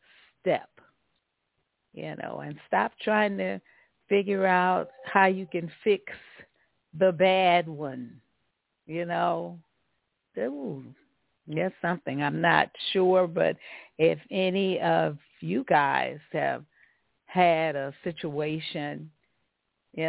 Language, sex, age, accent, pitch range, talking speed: English, female, 50-69, American, 150-185 Hz, 100 wpm